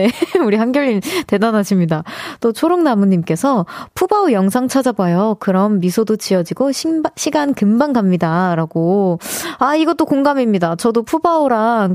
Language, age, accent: Korean, 20-39, native